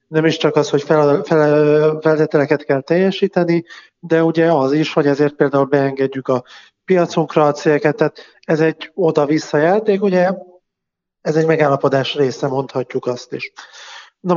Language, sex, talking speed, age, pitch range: Hungarian, male, 145 wpm, 30-49, 145-165 Hz